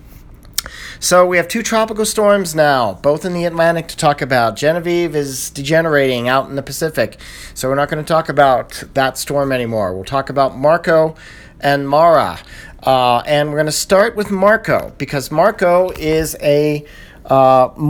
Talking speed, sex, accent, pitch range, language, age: 170 wpm, male, American, 130-160 Hz, English, 40-59